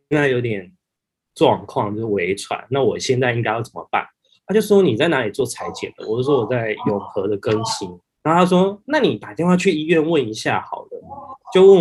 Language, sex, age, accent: Chinese, male, 20-39, native